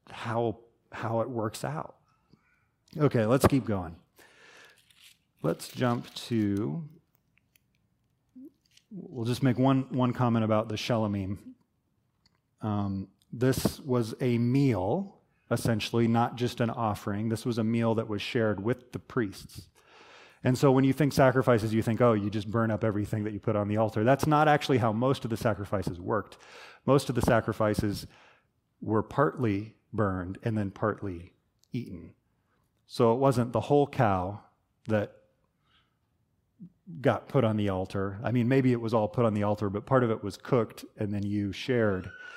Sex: male